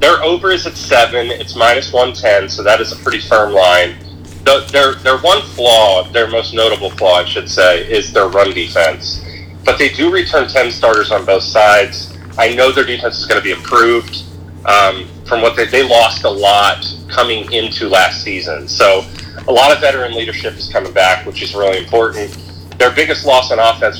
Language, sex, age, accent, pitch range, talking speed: English, male, 30-49, American, 90-125 Hz, 195 wpm